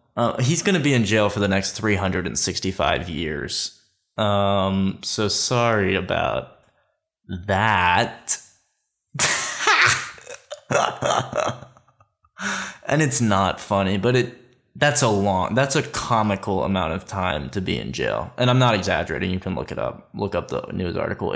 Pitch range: 95-110 Hz